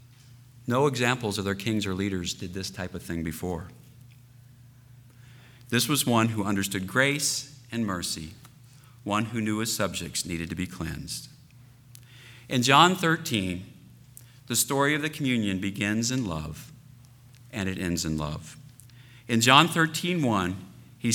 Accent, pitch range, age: American, 95-125 Hz, 50-69